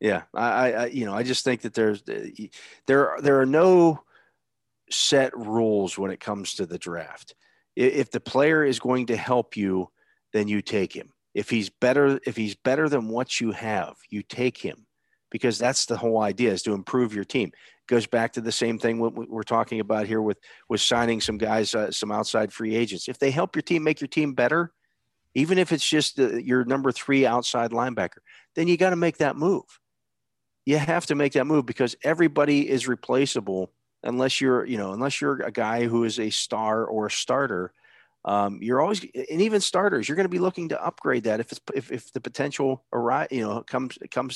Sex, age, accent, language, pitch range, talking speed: male, 50-69, American, English, 115-150 Hz, 210 wpm